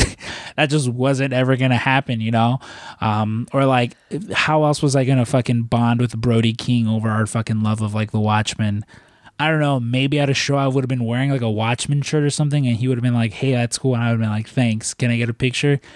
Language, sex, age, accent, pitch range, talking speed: English, male, 20-39, American, 110-135 Hz, 255 wpm